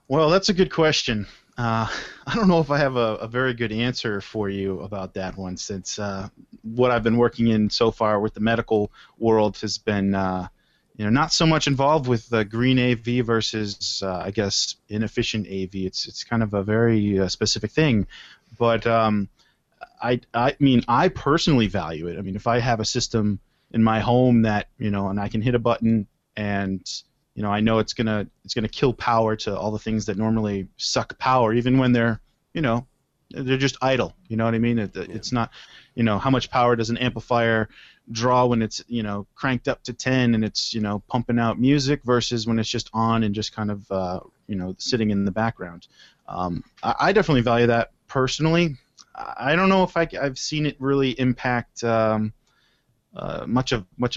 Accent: American